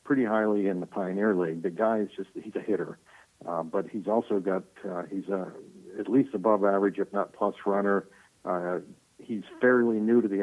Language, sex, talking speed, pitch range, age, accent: English, male, 200 wpm, 95-110 Hz, 60-79, American